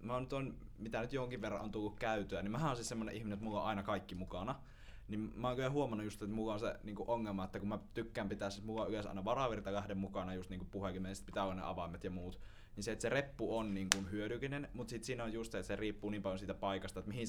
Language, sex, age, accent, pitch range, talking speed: Finnish, male, 20-39, native, 100-130 Hz, 280 wpm